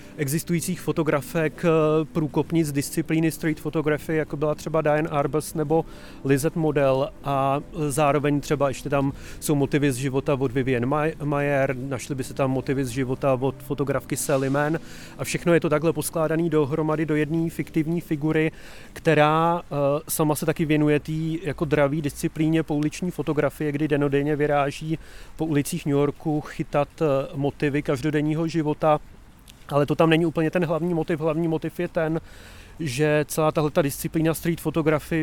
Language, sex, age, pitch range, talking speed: Czech, male, 30-49, 145-160 Hz, 150 wpm